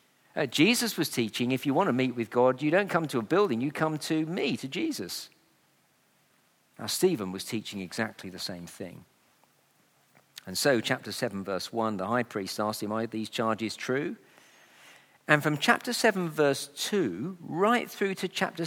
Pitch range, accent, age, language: 120-190 Hz, British, 50-69, English